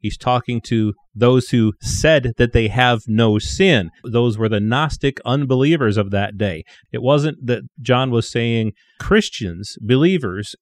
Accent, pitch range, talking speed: American, 110-140 Hz, 155 wpm